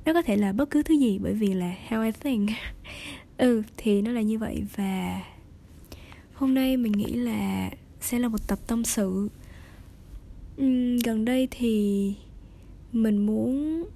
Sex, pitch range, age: female, 195-250 Hz, 20-39